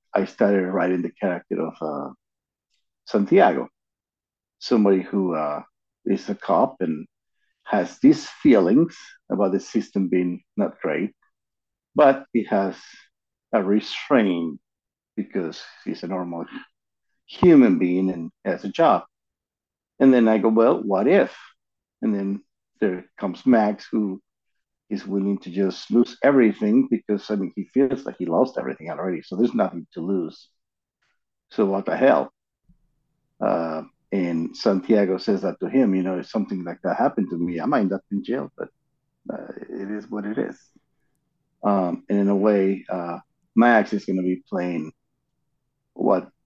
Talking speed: 155 wpm